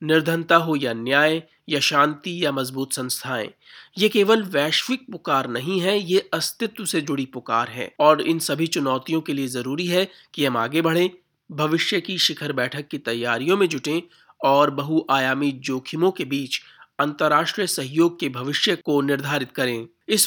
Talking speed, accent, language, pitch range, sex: 160 wpm, native, Hindi, 130-170 Hz, male